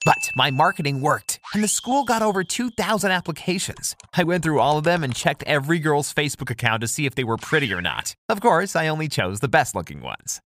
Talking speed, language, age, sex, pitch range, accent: 230 wpm, English, 30-49, male, 120-185 Hz, American